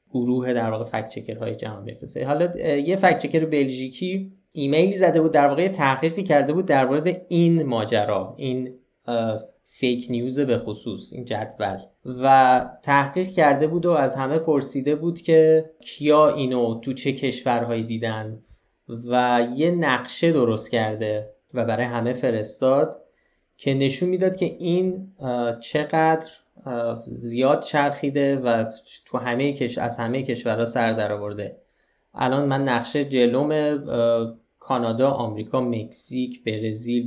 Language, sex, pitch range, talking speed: Persian, male, 115-145 Hz, 125 wpm